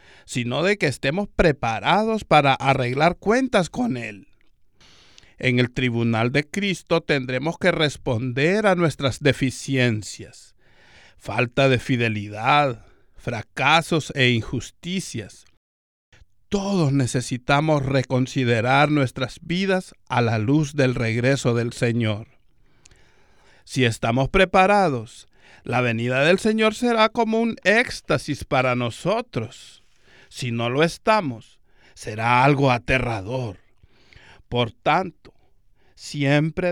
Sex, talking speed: male, 100 wpm